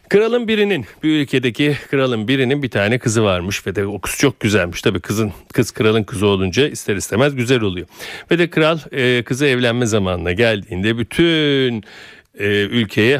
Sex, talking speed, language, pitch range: male, 170 wpm, Turkish, 110-160 Hz